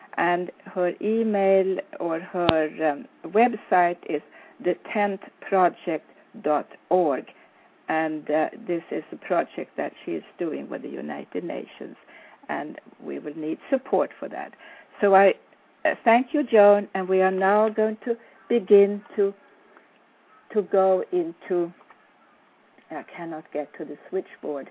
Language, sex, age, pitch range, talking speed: English, female, 60-79, 175-235 Hz, 130 wpm